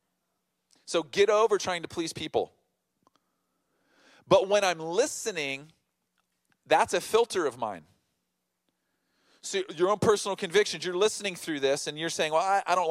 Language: English